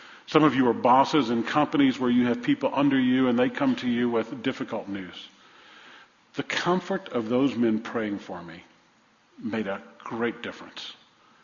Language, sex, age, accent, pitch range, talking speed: English, male, 50-69, American, 120-165 Hz, 175 wpm